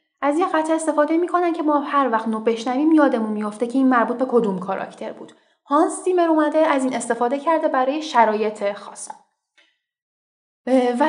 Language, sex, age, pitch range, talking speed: Persian, female, 10-29, 210-280 Hz, 170 wpm